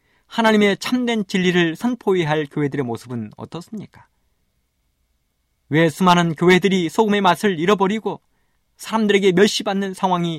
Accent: native